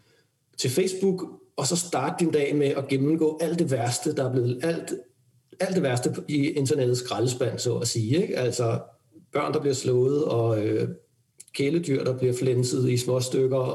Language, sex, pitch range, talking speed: Danish, male, 120-145 Hz, 180 wpm